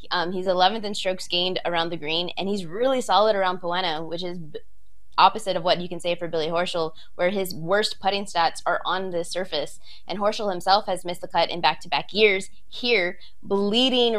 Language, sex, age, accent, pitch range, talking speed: English, female, 20-39, American, 180-225 Hz, 200 wpm